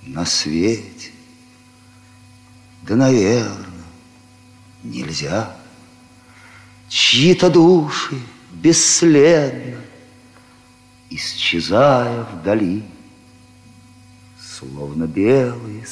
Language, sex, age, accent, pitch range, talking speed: Russian, male, 50-69, native, 115-125 Hz, 45 wpm